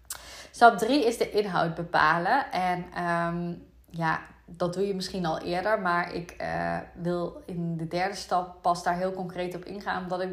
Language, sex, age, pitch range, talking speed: Dutch, female, 20-39, 175-205 Hz, 175 wpm